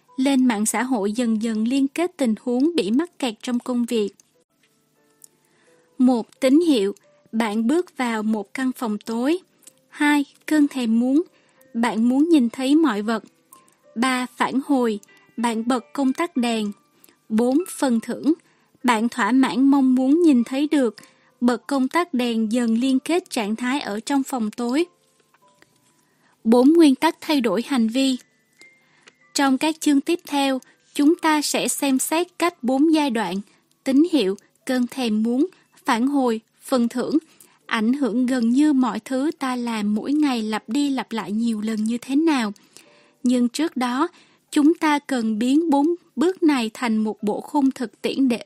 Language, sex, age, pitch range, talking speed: Vietnamese, female, 20-39, 235-295 Hz, 165 wpm